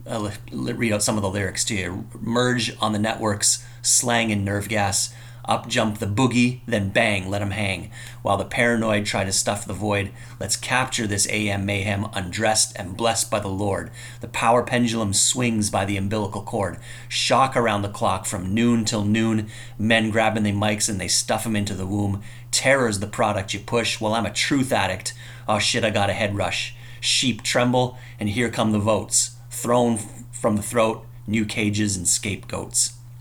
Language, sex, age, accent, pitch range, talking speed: English, male, 30-49, American, 105-120 Hz, 190 wpm